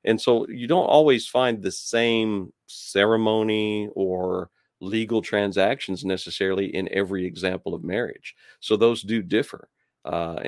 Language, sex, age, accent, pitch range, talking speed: English, male, 40-59, American, 85-105 Hz, 130 wpm